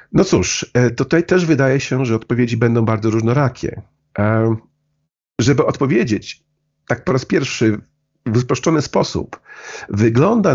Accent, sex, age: native, male, 50-69